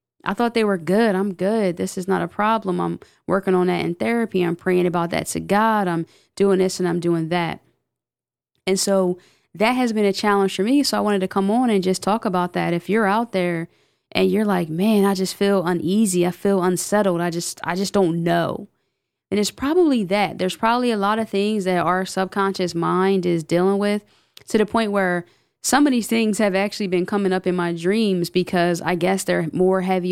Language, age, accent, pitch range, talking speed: English, 20-39, American, 175-210 Hz, 220 wpm